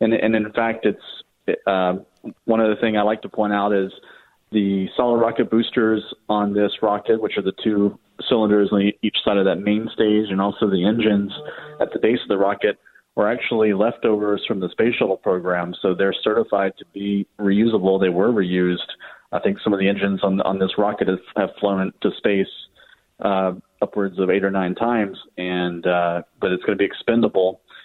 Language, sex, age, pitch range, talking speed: English, male, 30-49, 95-105 Hz, 190 wpm